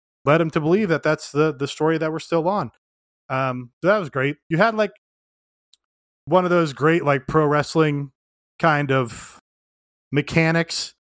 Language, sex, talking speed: English, male, 165 wpm